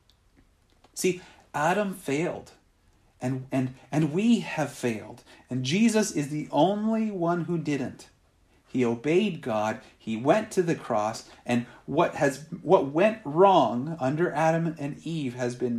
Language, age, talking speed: English, 40-59, 140 wpm